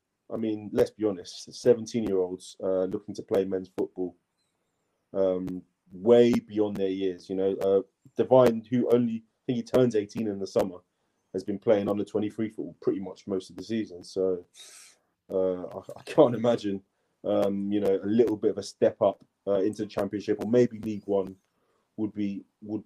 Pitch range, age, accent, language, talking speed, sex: 95-120 Hz, 30-49, British, English, 175 wpm, male